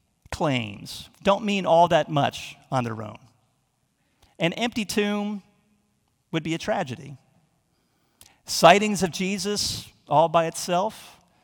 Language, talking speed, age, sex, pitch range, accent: English, 110 wpm, 40-59, male, 135-200 Hz, American